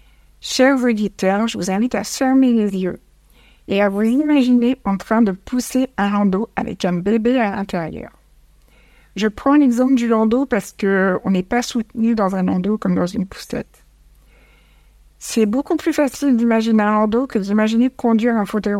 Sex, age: female, 60-79